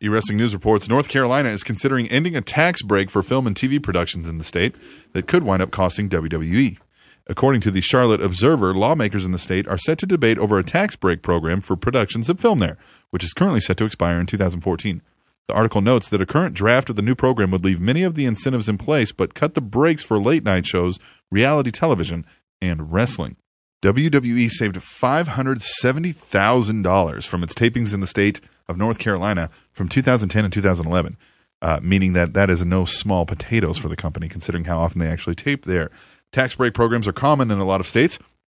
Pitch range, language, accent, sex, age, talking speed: 90-120 Hz, English, American, male, 30-49, 205 wpm